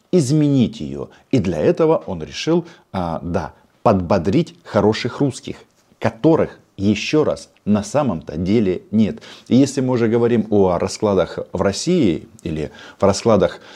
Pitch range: 95-135 Hz